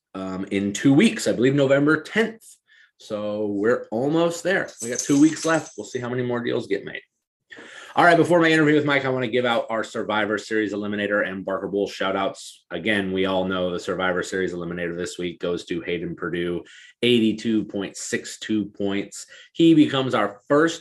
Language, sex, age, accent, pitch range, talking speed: English, male, 30-49, American, 100-130 Hz, 190 wpm